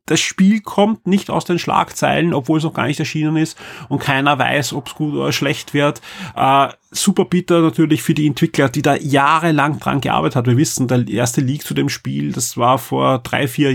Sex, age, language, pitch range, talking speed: male, 30-49, German, 125-155 Hz, 215 wpm